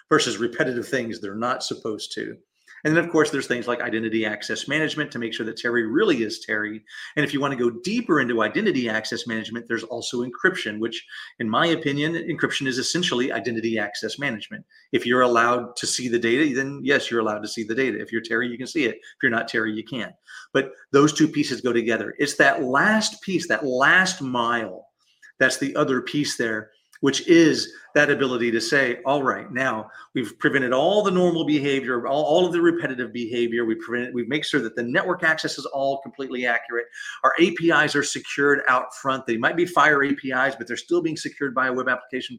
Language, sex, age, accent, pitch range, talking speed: English, male, 40-59, American, 115-150 Hz, 210 wpm